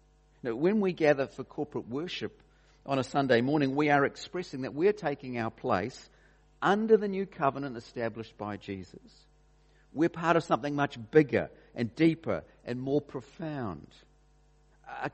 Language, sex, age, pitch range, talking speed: English, male, 50-69, 105-150 Hz, 145 wpm